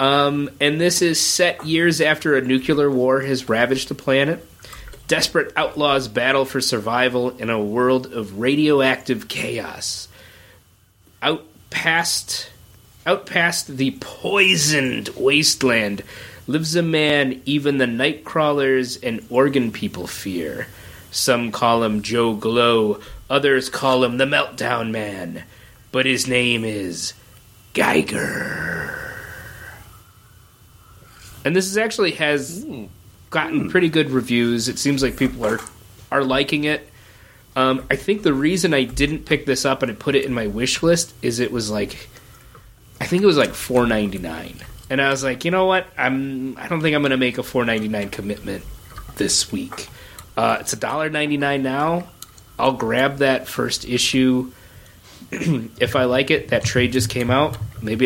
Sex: male